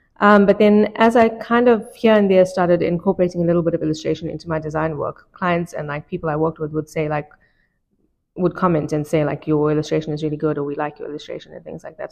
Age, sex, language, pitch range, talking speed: 20-39, female, English, 160-180 Hz, 250 wpm